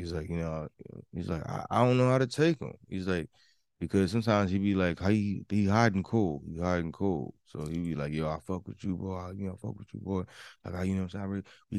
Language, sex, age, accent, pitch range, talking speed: English, male, 20-39, American, 85-100 Hz, 285 wpm